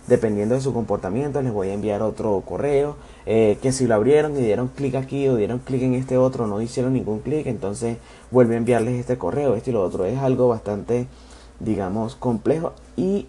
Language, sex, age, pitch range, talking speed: English, male, 20-39, 105-130 Hz, 205 wpm